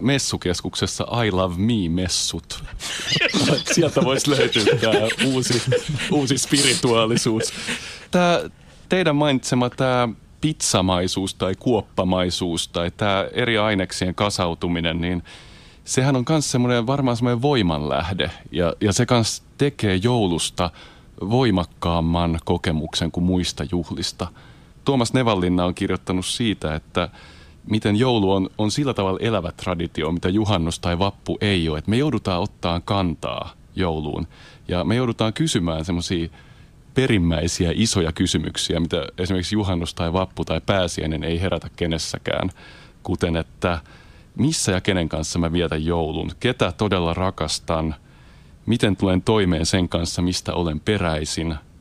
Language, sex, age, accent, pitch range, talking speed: Finnish, male, 30-49, native, 85-115 Hz, 125 wpm